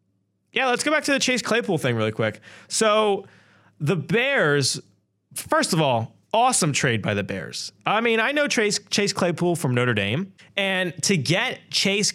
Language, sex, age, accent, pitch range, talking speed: English, male, 30-49, American, 125-195 Hz, 180 wpm